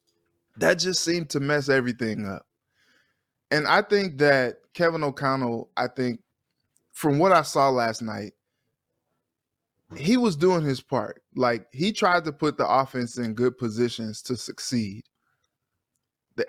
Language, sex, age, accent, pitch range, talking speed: English, male, 20-39, American, 115-150 Hz, 140 wpm